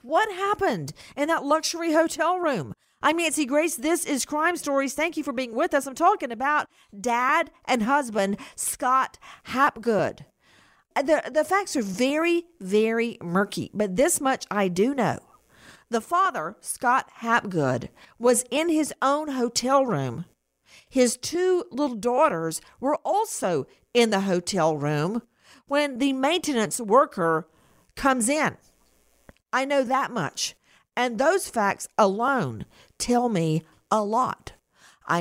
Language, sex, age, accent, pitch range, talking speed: English, female, 50-69, American, 195-285 Hz, 135 wpm